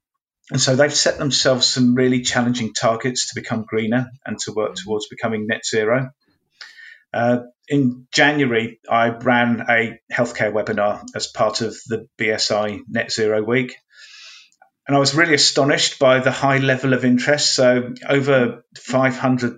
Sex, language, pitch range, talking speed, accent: male, English, 115-135 Hz, 150 wpm, British